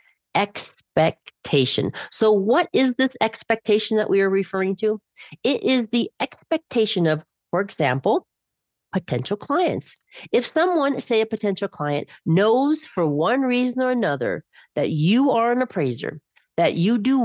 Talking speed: 140 wpm